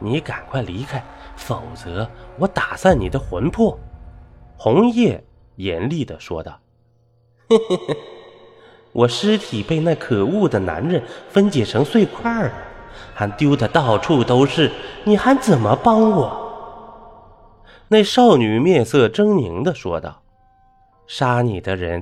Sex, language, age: male, Chinese, 20-39